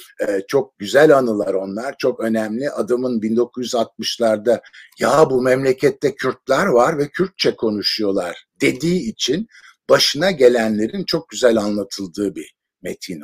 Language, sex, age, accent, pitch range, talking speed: Turkish, male, 60-79, native, 115-185 Hz, 115 wpm